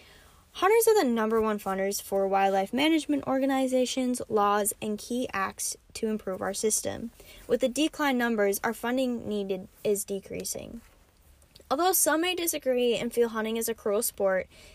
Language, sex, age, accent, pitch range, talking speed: English, female, 10-29, American, 200-275 Hz, 155 wpm